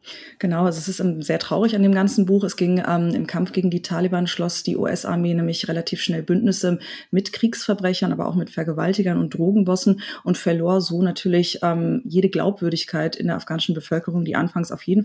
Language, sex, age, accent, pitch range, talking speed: German, female, 30-49, German, 165-195 Hz, 190 wpm